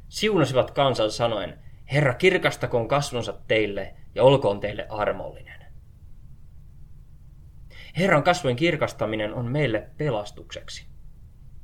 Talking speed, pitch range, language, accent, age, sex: 90 wpm, 105-145 Hz, Finnish, native, 20-39, male